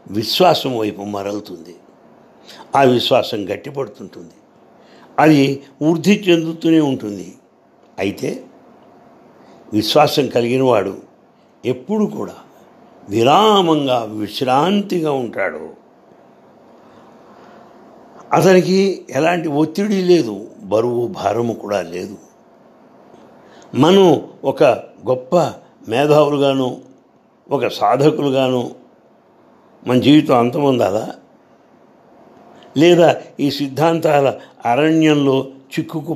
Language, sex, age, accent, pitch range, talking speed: English, male, 60-79, Indian, 120-165 Hz, 65 wpm